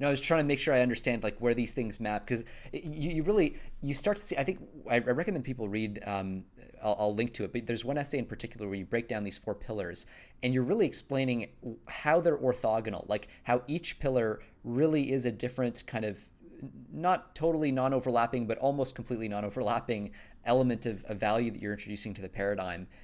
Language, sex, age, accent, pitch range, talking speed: English, male, 30-49, American, 110-145 Hz, 215 wpm